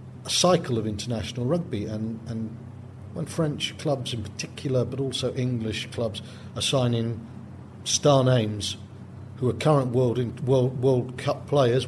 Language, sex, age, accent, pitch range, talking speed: English, male, 50-69, British, 120-145 Hz, 140 wpm